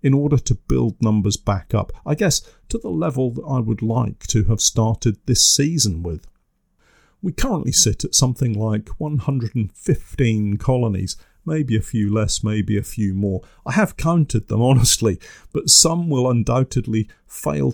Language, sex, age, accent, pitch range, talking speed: English, male, 50-69, British, 105-130 Hz, 160 wpm